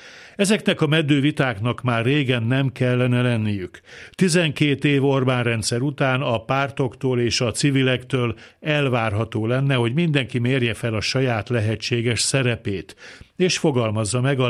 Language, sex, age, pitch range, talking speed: Hungarian, male, 60-79, 120-145 Hz, 130 wpm